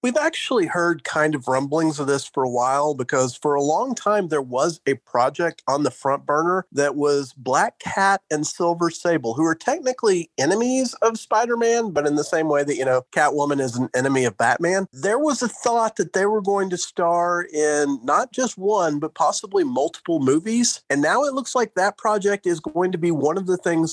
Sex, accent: male, American